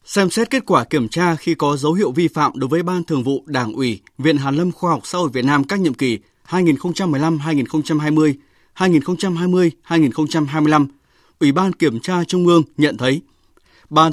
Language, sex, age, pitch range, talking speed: Vietnamese, male, 20-39, 140-180 Hz, 180 wpm